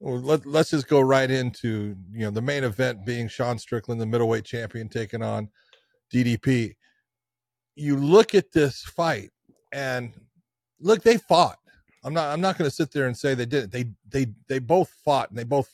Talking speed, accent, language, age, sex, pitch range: 190 wpm, American, English, 40-59, male, 125-165 Hz